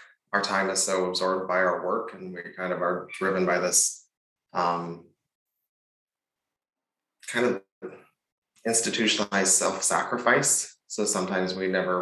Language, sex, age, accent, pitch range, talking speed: English, male, 20-39, American, 90-100 Hz, 125 wpm